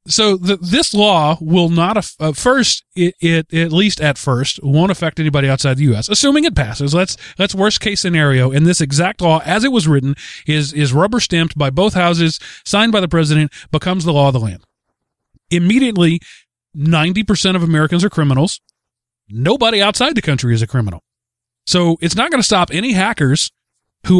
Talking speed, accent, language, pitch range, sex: 190 wpm, American, English, 135-185 Hz, male